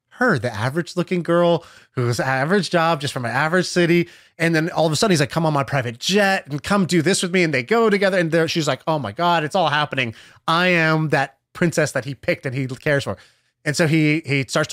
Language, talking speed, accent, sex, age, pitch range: English, 250 wpm, American, male, 20-39, 130-165 Hz